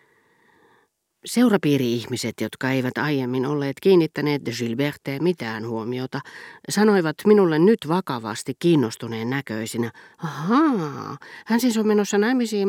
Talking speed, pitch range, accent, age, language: 105 wpm, 120-170 Hz, native, 40-59, Finnish